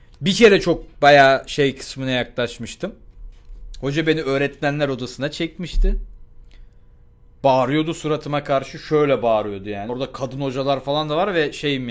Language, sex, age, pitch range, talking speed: Turkish, male, 40-59, 120-175 Hz, 130 wpm